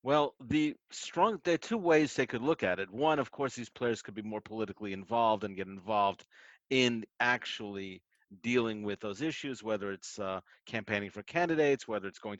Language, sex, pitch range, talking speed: English, male, 105-135 Hz, 195 wpm